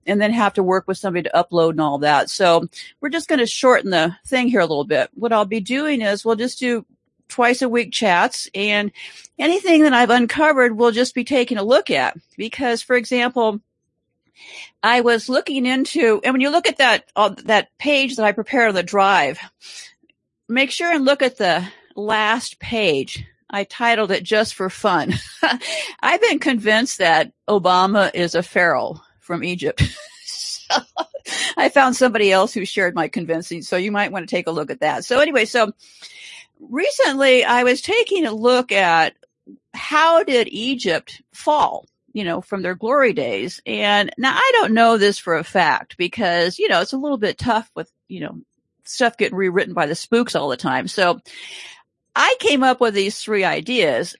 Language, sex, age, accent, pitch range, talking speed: English, female, 50-69, American, 195-260 Hz, 185 wpm